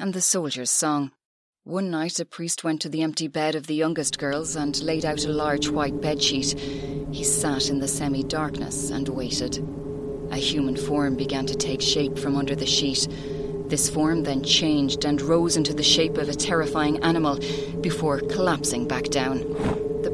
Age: 30-49